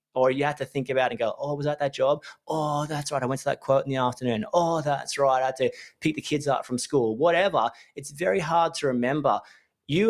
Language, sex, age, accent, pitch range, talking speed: English, male, 30-49, Australian, 125-175 Hz, 260 wpm